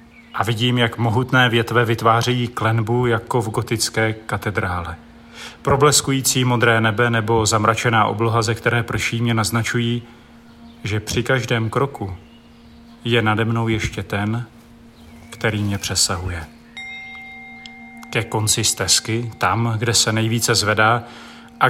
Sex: male